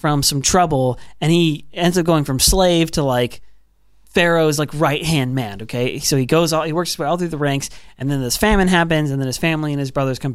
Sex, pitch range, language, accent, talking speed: male, 130-175 Hz, English, American, 245 wpm